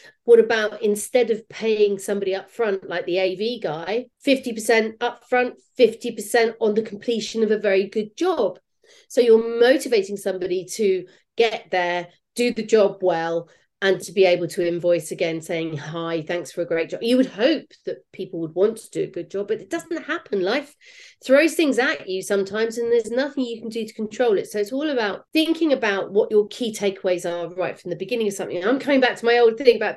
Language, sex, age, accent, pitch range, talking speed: English, female, 40-59, British, 195-260 Hz, 210 wpm